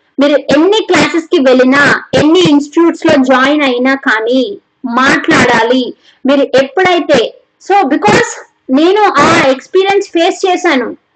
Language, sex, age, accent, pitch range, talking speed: Telugu, female, 20-39, native, 275-345 Hz, 115 wpm